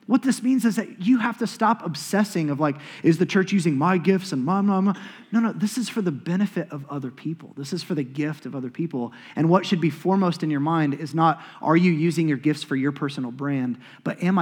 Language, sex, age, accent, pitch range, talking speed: English, male, 20-39, American, 135-170 Hz, 260 wpm